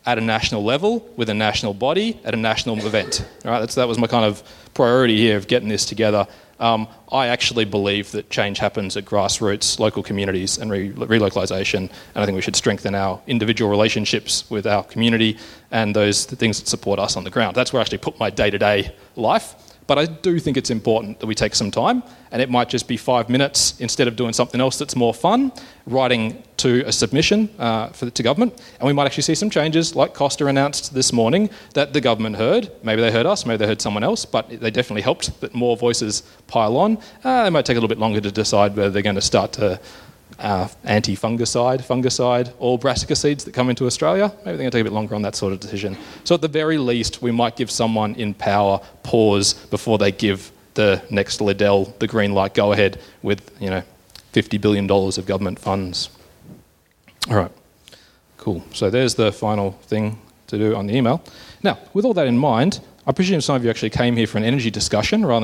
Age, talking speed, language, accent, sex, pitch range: 30-49, 220 wpm, English, Australian, male, 105-125 Hz